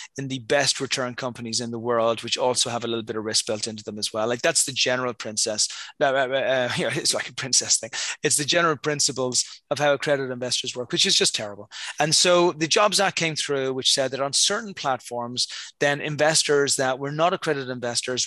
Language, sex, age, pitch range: English, male, 30-49, 125-150 Hz